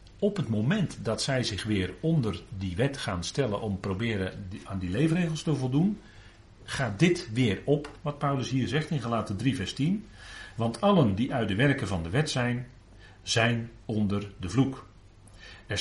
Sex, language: male, Dutch